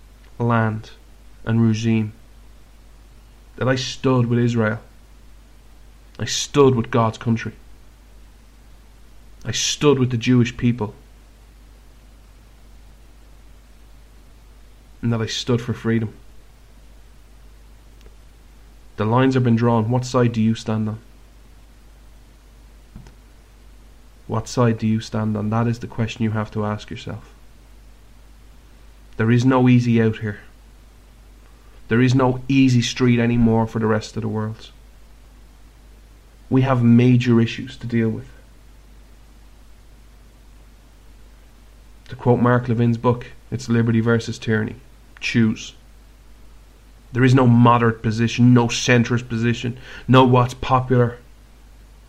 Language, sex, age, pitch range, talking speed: English, male, 30-49, 110-120 Hz, 110 wpm